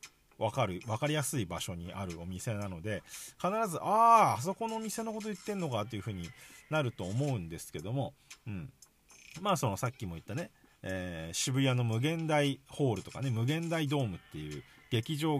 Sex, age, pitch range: male, 40-59, 100-155 Hz